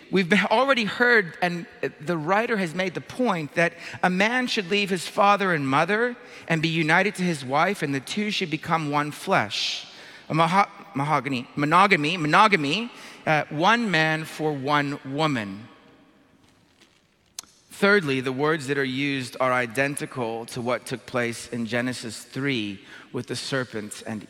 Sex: male